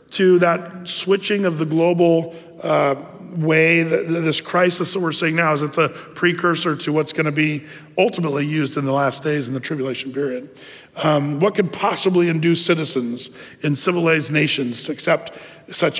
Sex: male